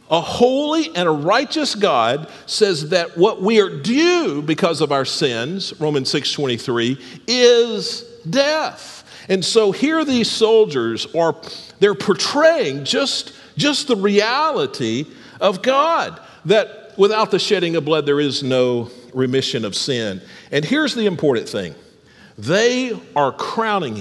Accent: American